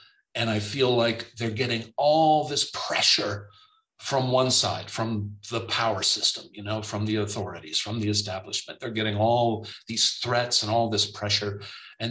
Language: English